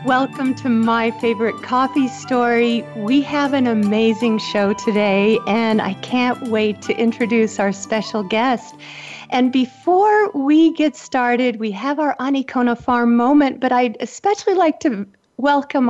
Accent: American